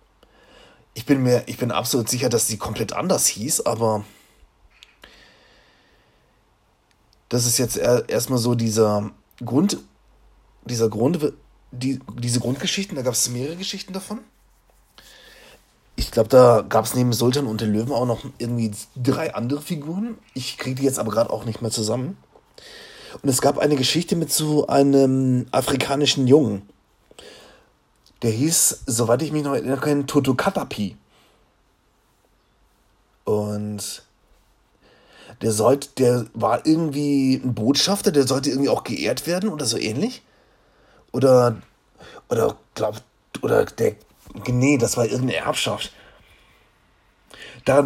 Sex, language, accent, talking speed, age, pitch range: male, German, German, 130 wpm, 30-49, 115-140 Hz